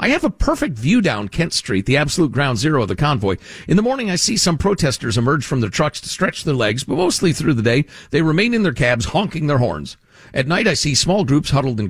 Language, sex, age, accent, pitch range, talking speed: English, male, 50-69, American, 115-175 Hz, 255 wpm